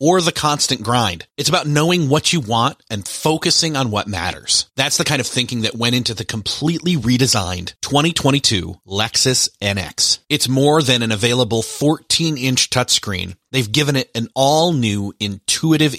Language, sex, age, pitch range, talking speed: English, male, 30-49, 110-145 Hz, 165 wpm